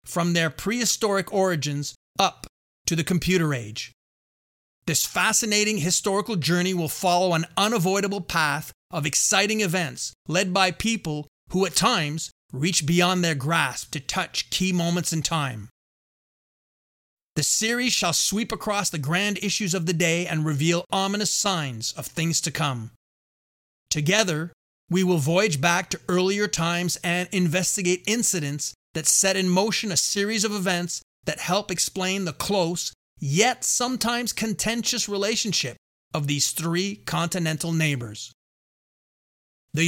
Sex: male